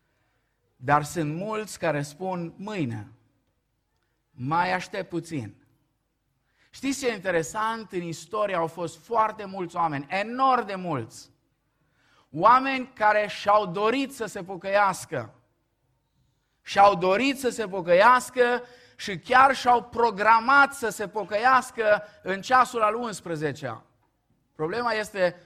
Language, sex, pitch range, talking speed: Romanian, male, 125-195 Hz, 115 wpm